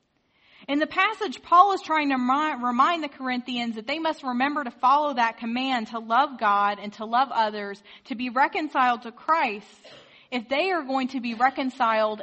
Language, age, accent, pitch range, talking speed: English, 30-49, American, 220-270 Hz, 180 wpm